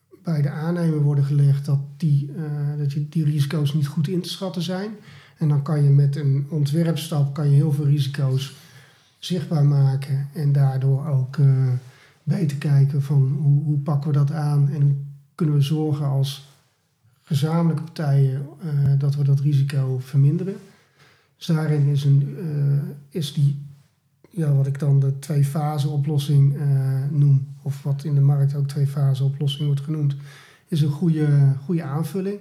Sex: male